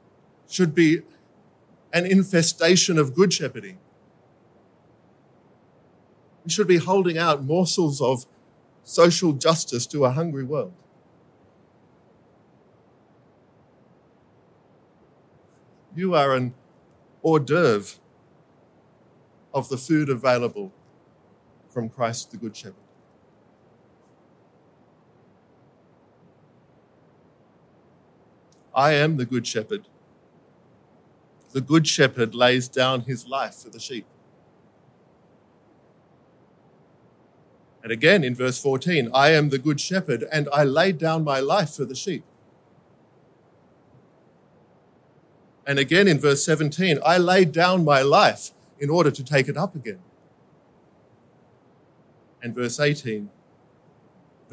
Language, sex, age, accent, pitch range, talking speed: English, male, 50-69, Australian, 125-165 Hz, 95 wpm